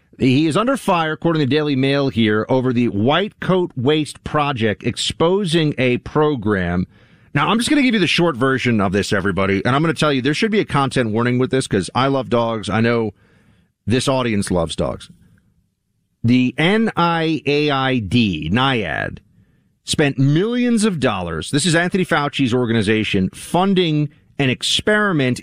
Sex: male